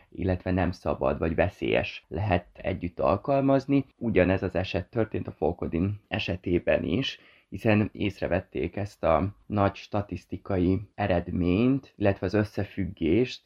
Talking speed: 115 wpm